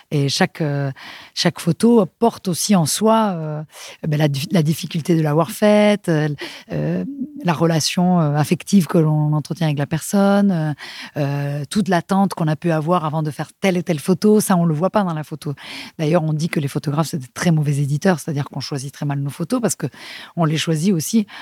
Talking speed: 200 wpm